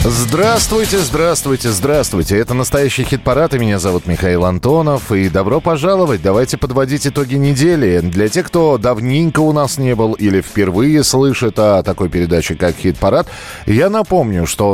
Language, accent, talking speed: Russian, native, 150 wpm